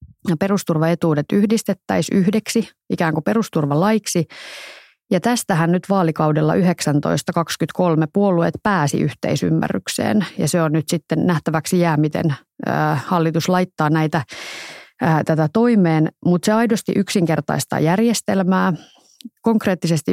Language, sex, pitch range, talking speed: Finnish, female, 155-190 Hz, 100 wpm